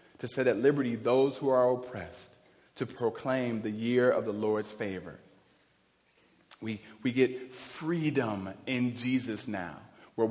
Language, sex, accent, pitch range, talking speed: English, male, American, 115-135 Hz, 140 wpm